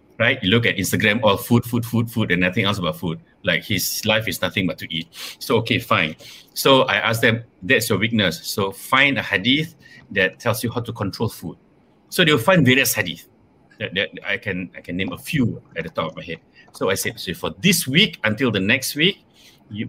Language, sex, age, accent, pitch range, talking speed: English, male, 60-79, Malaysian, 95-130 Hz, 230 wpm